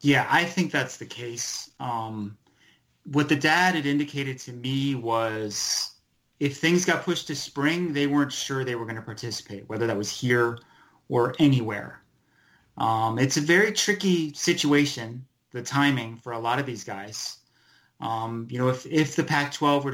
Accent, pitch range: American, 120-145 Hz